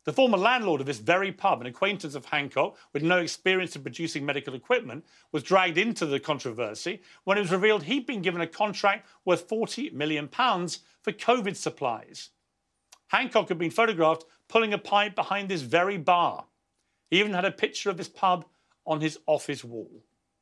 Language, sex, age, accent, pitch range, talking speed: English, male, 40-59, British, 155-200 Hz, 180 wpm